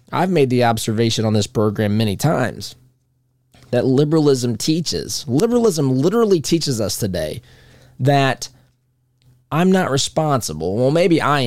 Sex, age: male, 20-39